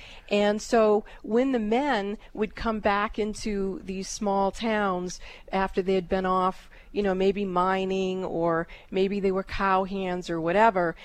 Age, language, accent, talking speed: 40-59, English, American, 160 wpm